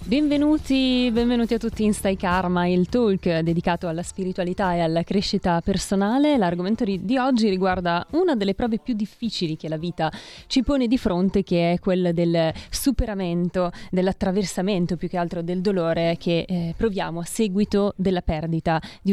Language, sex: Italian, female